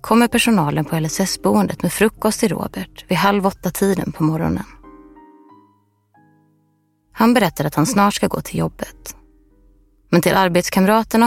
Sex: female